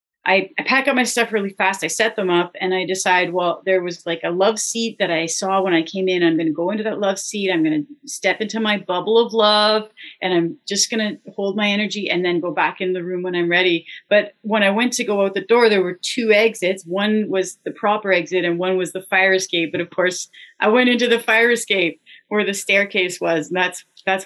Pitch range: 185-240 Hz